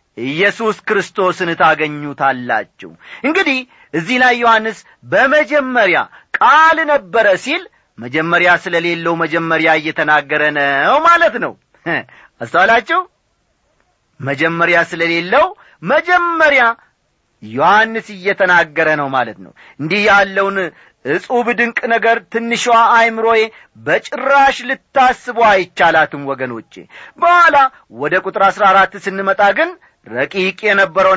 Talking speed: 90 wpm